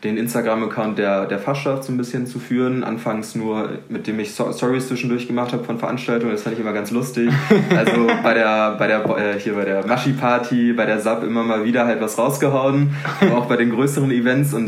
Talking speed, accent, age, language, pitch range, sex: 210 wpm, German, 20-39, German, 110-125 Hz, male